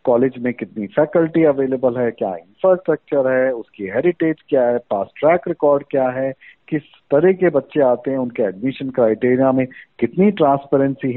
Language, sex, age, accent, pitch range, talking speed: Hindi, male, 50-69, native, 125-165 Hz, 160 wpm